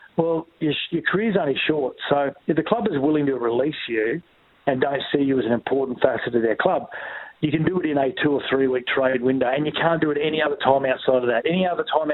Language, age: English, 40-59